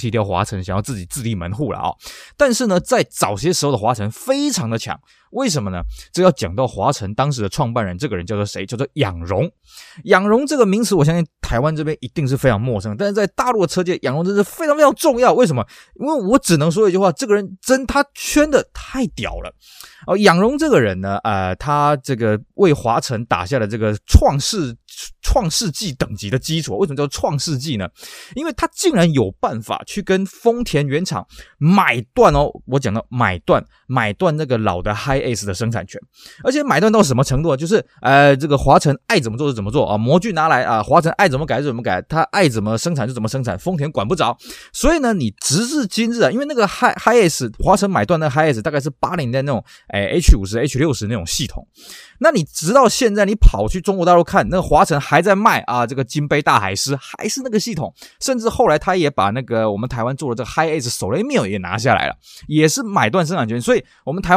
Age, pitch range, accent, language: 20-39, 120-195 Hz, native, Chinese